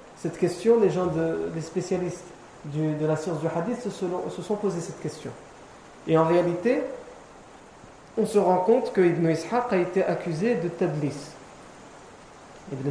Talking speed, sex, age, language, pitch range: 165 wpm, male, 40-59, French, 165-205 Hz